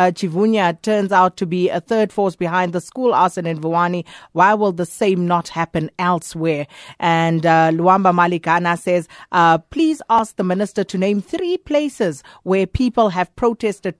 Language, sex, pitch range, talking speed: English, female, 170-210 Hz, 170 wpm